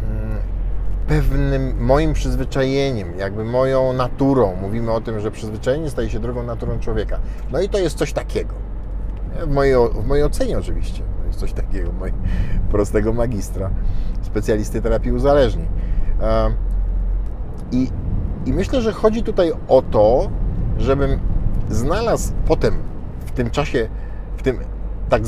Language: Polish